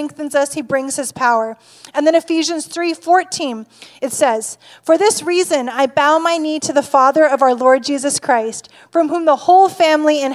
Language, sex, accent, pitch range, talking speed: English, female, American, 270-325 Hz, 195 wpm